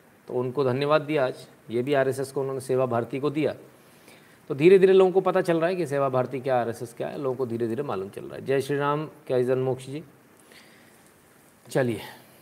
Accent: native